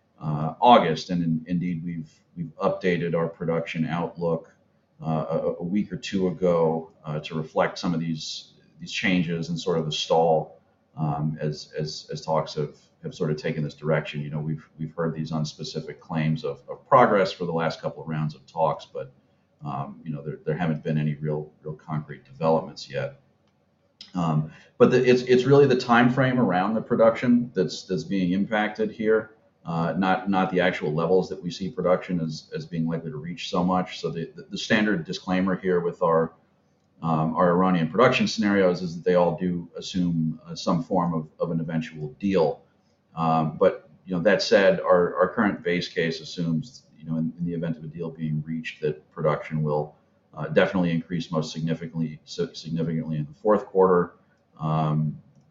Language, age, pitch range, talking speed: English, 40-59, 80-90 Hz, 190 wpm